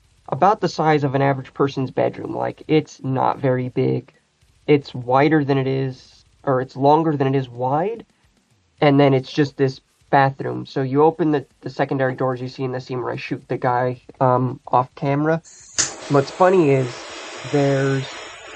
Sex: male